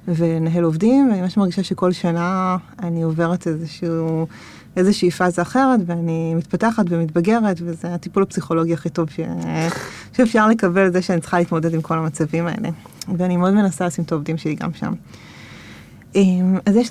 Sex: female